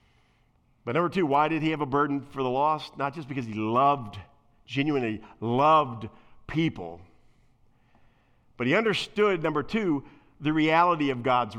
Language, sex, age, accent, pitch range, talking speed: English, male, 50-69, American, 120-190 Hz, 150 wpm